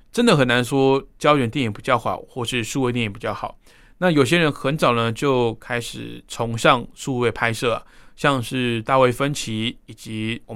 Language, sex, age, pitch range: Chinese, male, 20-39, 115-140 Hz